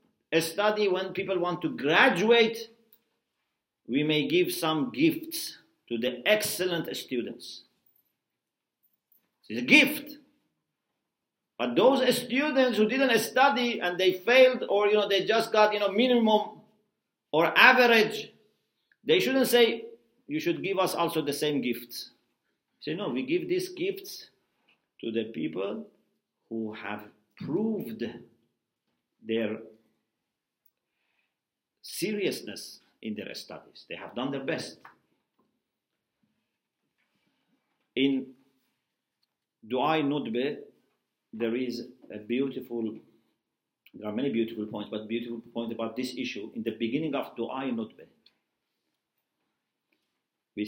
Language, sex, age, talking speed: English, male, 50-69, 115 wpm